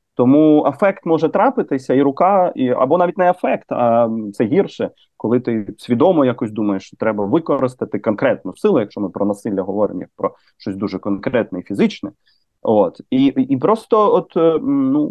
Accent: native